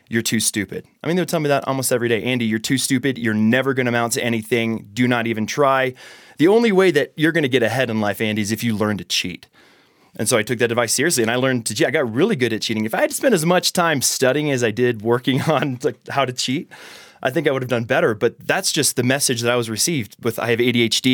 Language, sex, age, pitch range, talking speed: English, male, 30-49, 110-135 Hz, 285 wpm